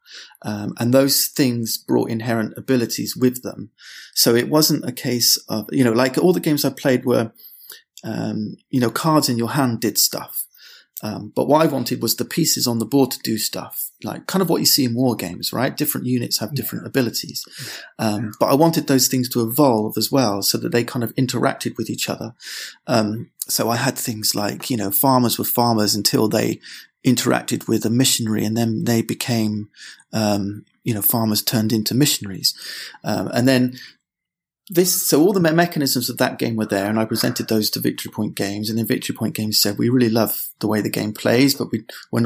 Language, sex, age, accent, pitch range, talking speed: English, male, 30-49, British, 110-130 Hz, 210 wpm